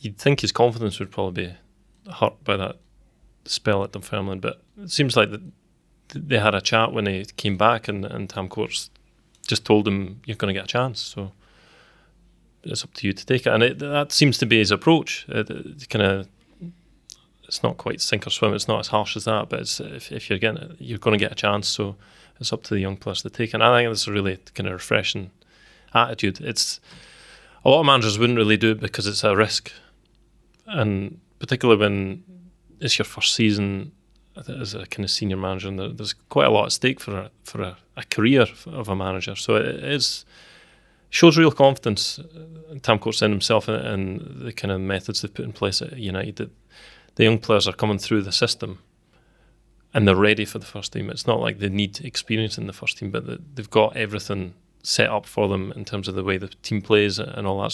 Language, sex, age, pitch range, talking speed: English, male, 20-39, 100-120 Hz, 215 wpm